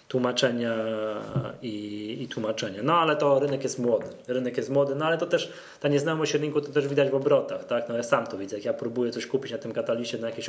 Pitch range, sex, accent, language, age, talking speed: 120-145 Hz, male, native, Polish, 20-39, 240 wpm